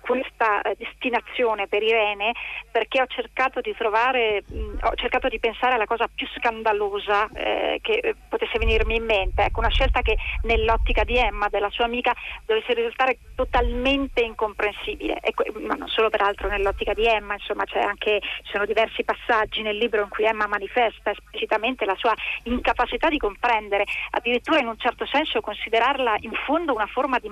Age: 40-59